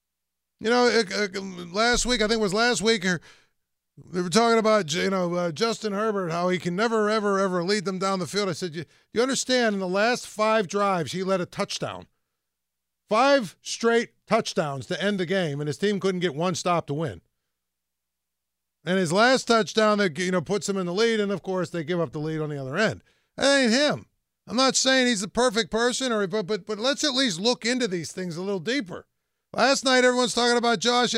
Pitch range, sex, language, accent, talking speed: 165-240 Hz, male, English, American, 220 wpm